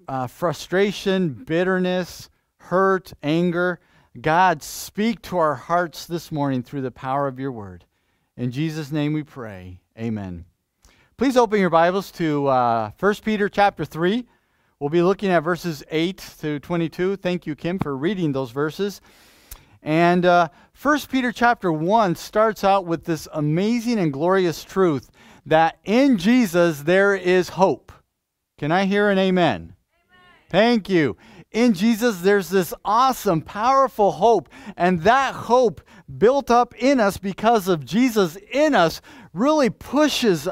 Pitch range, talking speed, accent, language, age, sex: 155-225 Hz, 145 wpm, American, English, 40-59, male